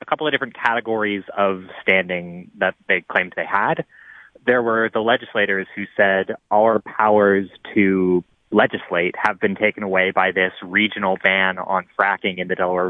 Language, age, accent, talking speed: English, 20-39, American, 165 wpm